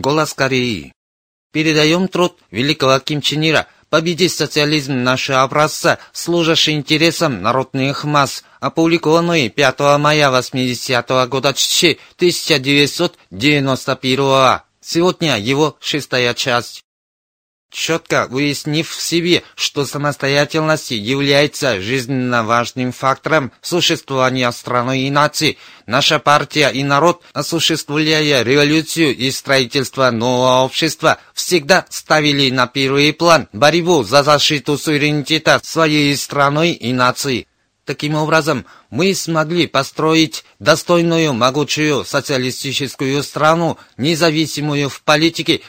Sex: male